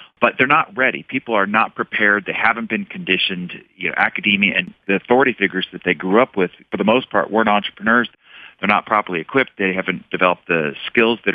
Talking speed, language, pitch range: 200 wpm, English, 85-105 Hz